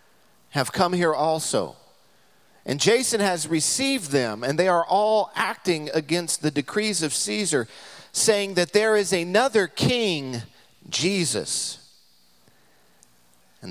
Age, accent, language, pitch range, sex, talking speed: 40-59, American, English, 105-160 Hz, male, 120 wpm